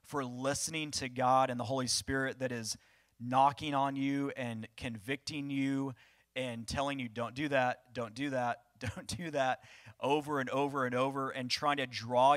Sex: male